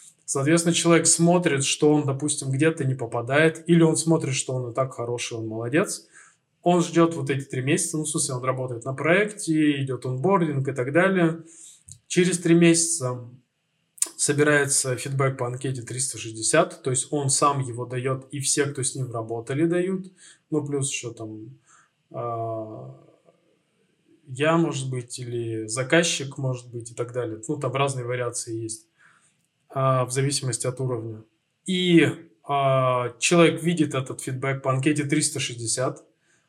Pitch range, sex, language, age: 130-165 Hz, male, Russian, 20-39